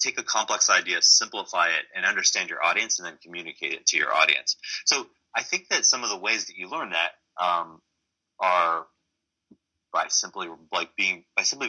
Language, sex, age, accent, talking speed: English, male, 30-49, American, 190 wpm